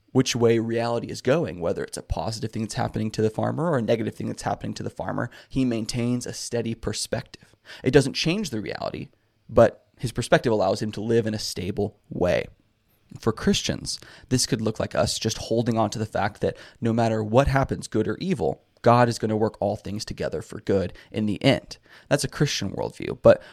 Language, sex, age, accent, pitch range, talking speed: English, male, 20-39, American, 110-125 Hz, 215 wpm